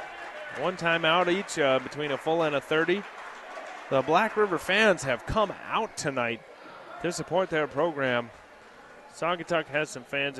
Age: 30-49